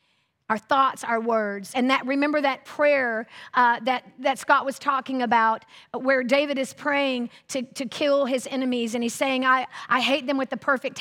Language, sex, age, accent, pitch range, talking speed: English, female, 40-59, American, 230-285 Hz, 190 wpm